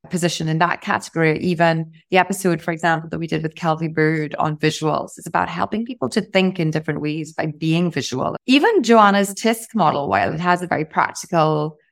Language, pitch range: English, 165-195 Hz